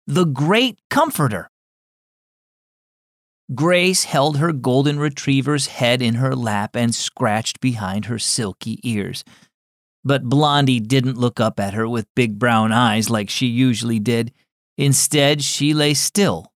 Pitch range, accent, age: 110-170 Hz, American, 40-59